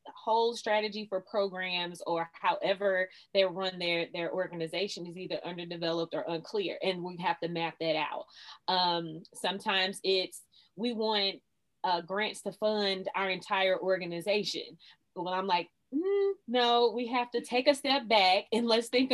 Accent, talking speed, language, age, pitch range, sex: American, 165 wpm, English, 20-39, 185-220 Hz, female